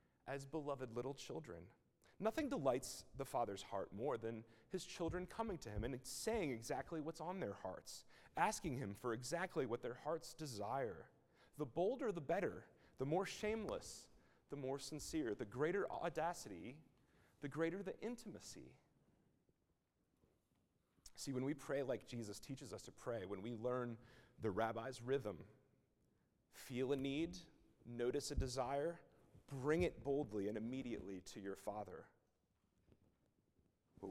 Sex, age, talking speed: male, 30-49, 140 wpm